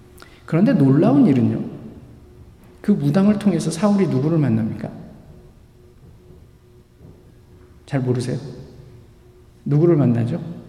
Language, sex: Korean, male